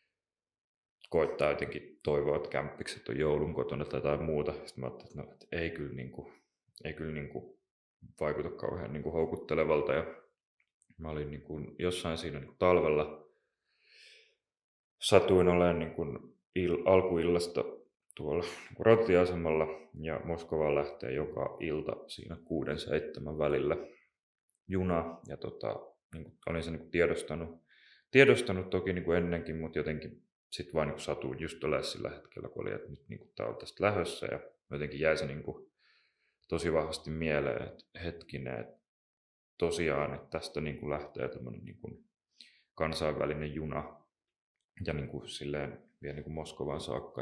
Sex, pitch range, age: male, 75-90 Hz, 30-49